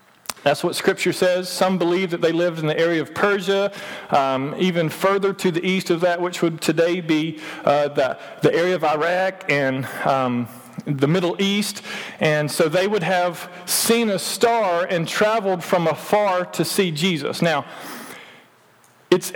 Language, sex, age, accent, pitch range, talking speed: English, male, 40-59, American, 165-205 Hz, 165 wpm